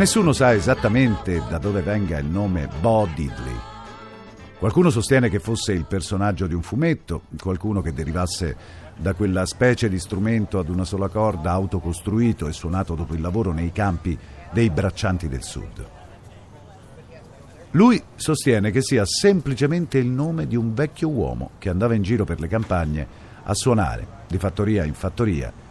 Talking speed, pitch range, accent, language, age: 155 wpm, 95-140 Hz, native, Italian, 50-69